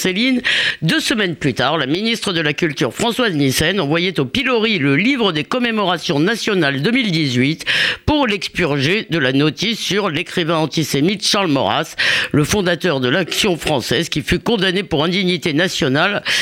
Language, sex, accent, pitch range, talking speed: French, female, French, 160-230 Hz, 155 wpm